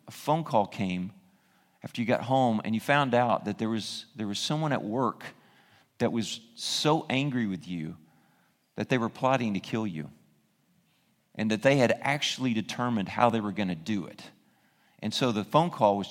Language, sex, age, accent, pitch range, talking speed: English, male, 40-59, American, 105-140 Hz, 195 wpm